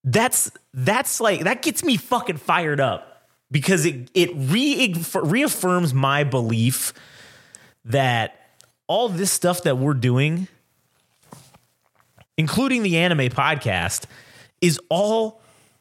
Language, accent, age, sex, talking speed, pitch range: English, American, 30-49, male, 105 wpm, 130-185 Hz